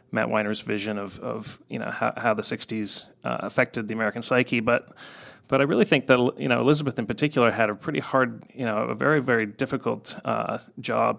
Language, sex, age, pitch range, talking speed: English, male, 30-49, 110-120 Hz, 210 wpm